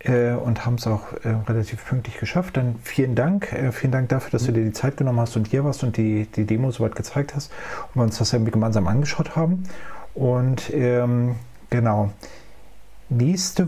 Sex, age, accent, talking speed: male, 40-59, German, 190 wpm